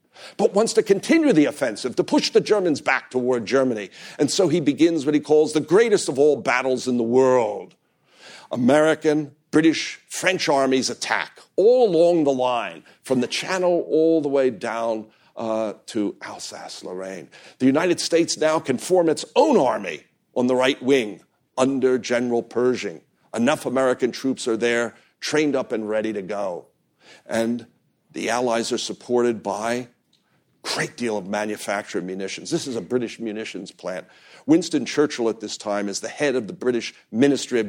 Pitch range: 110-145 Hz